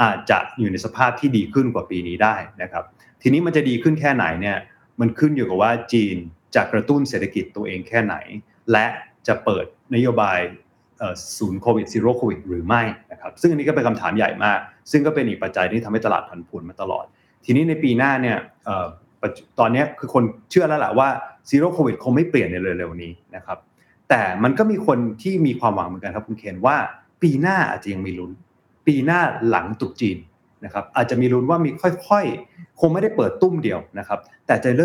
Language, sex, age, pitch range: Thai, male, 30-49, 105-150 Hz